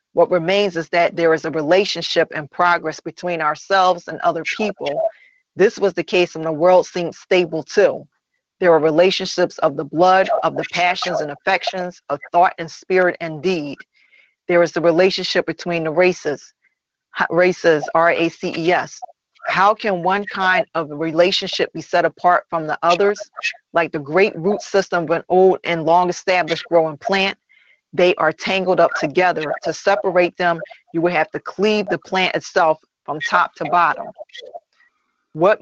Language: English